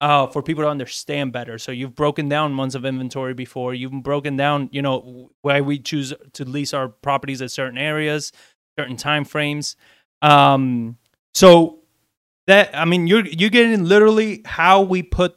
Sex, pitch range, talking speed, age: male, 140-170 Hz, 170 wpm, 20-39